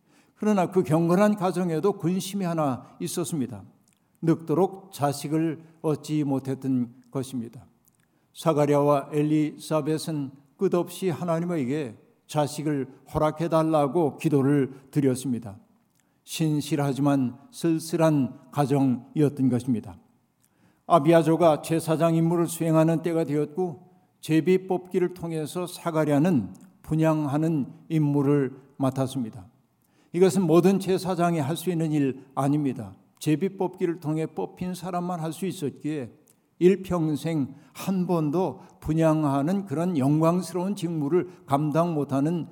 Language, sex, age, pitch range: Korean, male, 50-69, 140-170 Hz